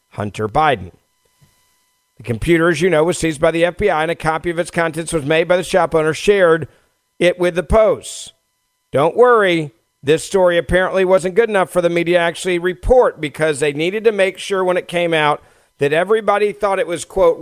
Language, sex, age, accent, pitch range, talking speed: English, male, 50-69, American, 145-195 Hz, 205 wpm